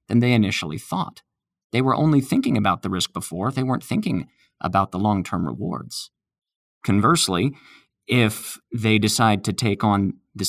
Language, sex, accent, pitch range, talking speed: English, male, American, 100-120 Hz, 155 wpm